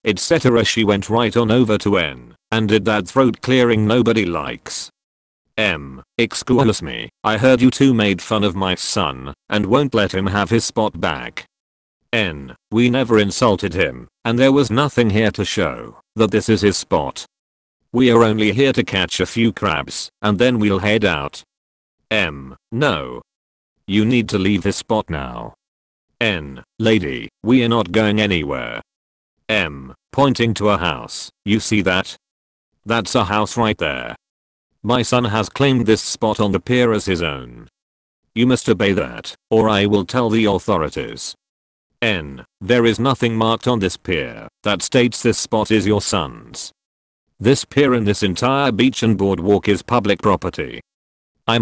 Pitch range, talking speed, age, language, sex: 95-120 Hz, 165 wpm, 40-59, English, male